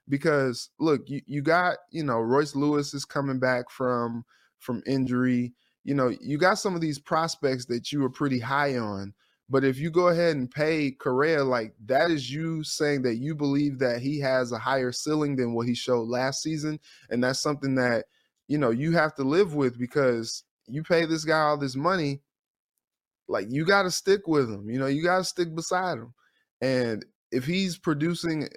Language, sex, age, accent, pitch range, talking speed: English, male, 20-39, American, 125-160 Hz, 200 wpm